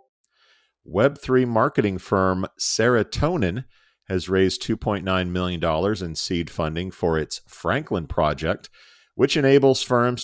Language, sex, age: English, male, 40-59